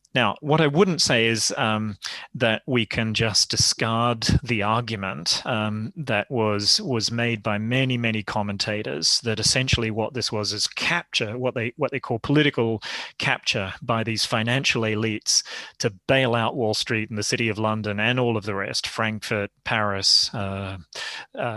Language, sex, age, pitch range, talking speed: English, male, 30-49, 110-130 Hz, 165 wpm